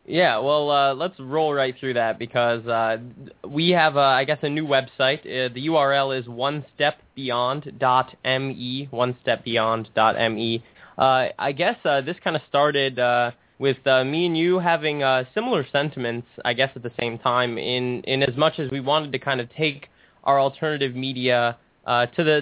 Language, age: English, 20-39